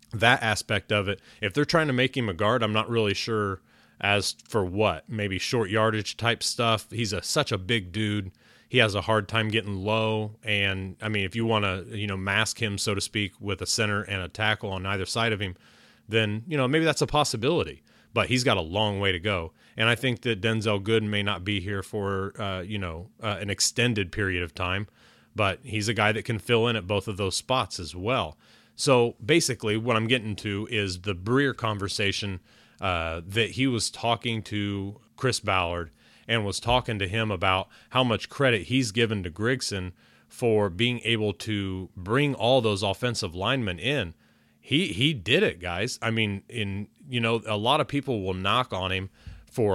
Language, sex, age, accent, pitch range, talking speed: English, male, 30-49, American, 95-115 Hz, 205 wpm